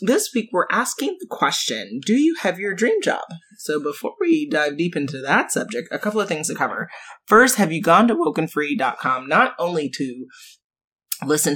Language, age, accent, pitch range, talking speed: English, 30-49, American, 145-195 Hz, 185 wpm